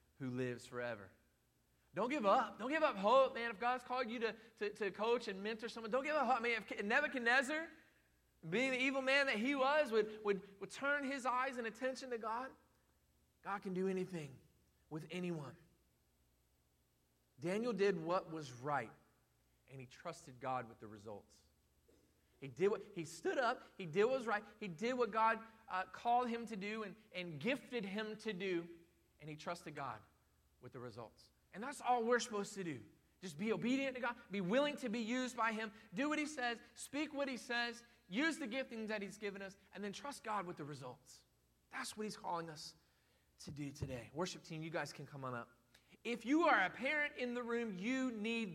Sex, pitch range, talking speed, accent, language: male, 160-245 Hz, 200 wpm, American, English